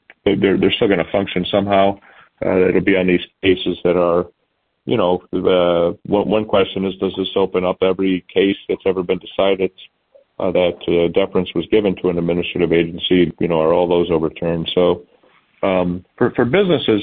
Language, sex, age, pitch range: English, male, 40-59, 85-95 Hz